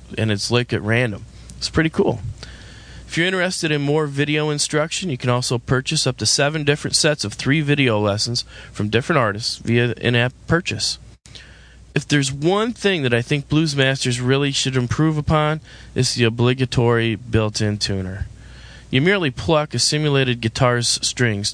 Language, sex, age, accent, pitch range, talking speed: English, male, 20-39, American, 110-145 Hz, 160 wpm